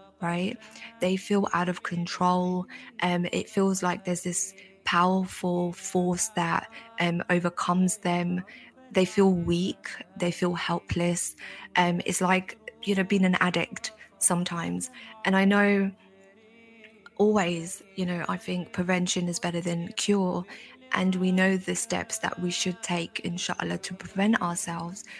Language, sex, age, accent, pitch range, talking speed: English, female, 20-39, British, 175-195 Hz, 140 wpm